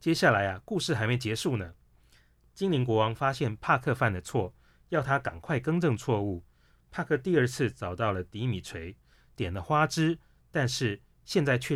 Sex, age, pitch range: male, 30-49, 95-130 Hz